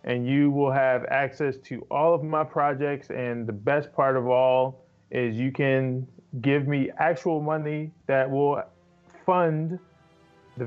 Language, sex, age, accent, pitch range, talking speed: English, male, 20-39, American, 125-150 Hz, 150 wpm